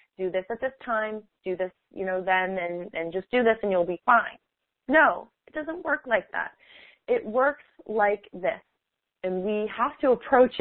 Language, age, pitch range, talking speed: English, 20-39, 190-275 Hz, 190 wpm